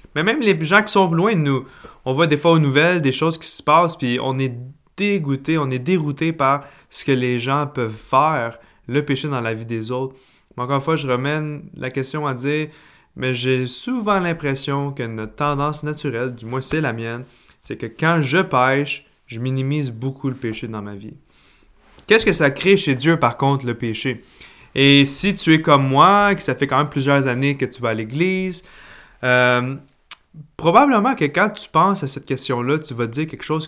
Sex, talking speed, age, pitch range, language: male, 220 wpm, 20-39, 130-165 Hz, French